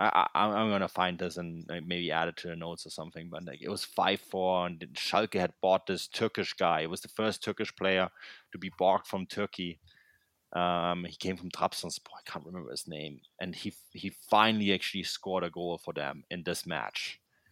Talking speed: 210 wpm